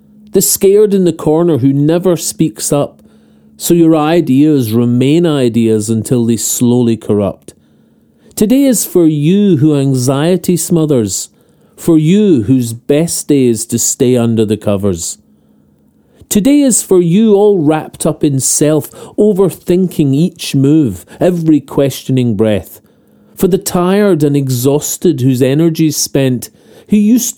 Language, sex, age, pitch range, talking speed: English, male, 40-59, 125-175 Hz, 135 wpm